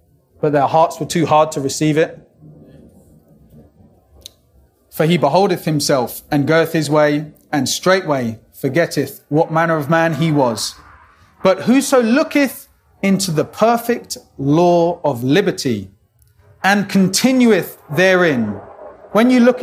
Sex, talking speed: male, 125 wpm